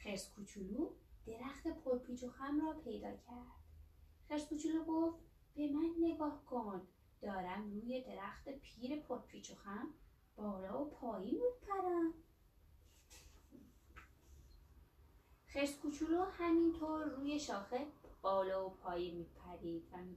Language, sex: Persian, female